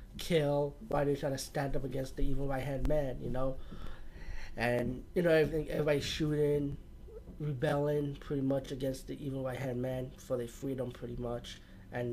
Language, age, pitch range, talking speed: English, 20-39, 130-155 Hz, 185 wpm